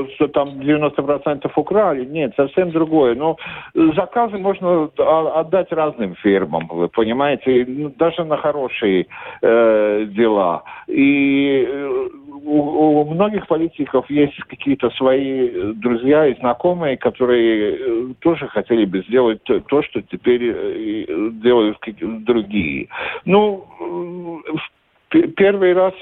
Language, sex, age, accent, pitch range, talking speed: Russian, male, 50-69, native, 130-175 Hz, 100 wpm